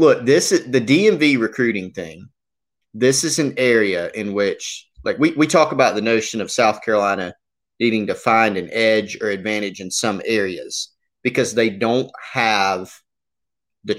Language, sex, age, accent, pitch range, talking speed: English, male, 30-49, American, 105-125 Hz, 165 wpm